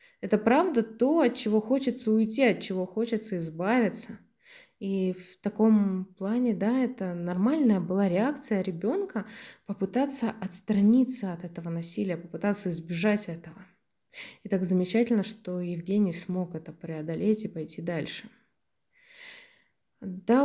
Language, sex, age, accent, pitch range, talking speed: Russian, female, 20-39, native, 190-240 Hz, 120 wpm